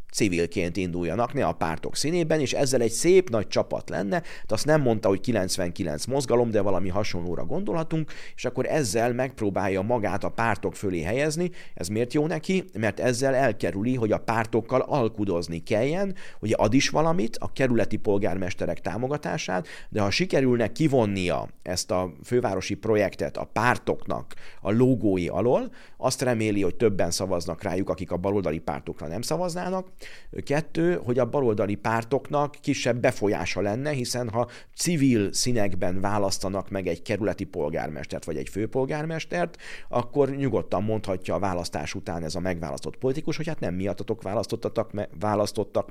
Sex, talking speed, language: male, 150 wpm, Hungarian